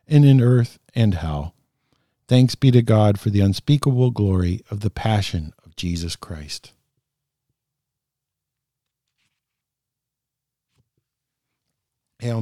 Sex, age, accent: male, 50-69, American